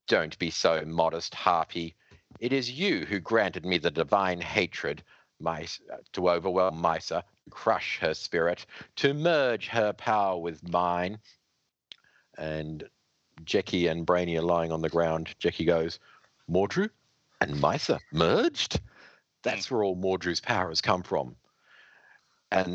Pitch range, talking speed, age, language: 85-115 Hz, 130 wpm, 50-69, English